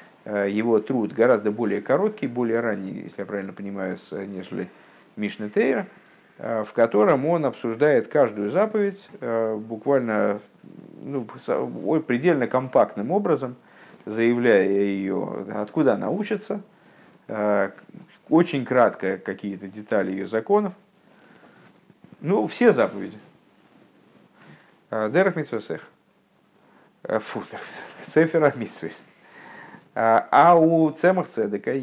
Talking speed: 90 wpm